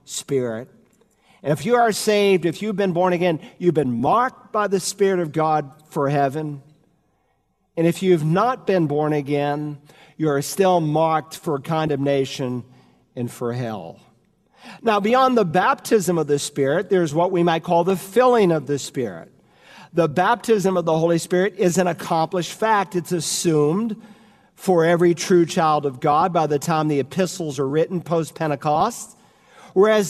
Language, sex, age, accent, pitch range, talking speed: English, male, 50-69, American, 155-210 Hz, 160 wpm